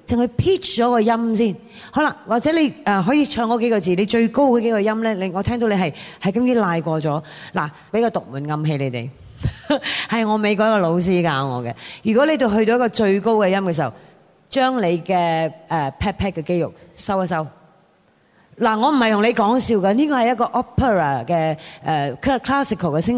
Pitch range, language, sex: 180-245 Hz, Chinese, female